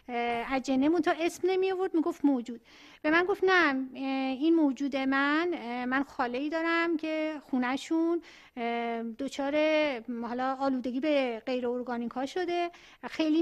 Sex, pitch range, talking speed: female, 275-345 Hz, 130 wpm